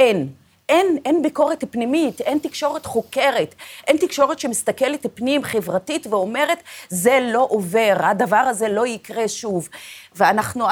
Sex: female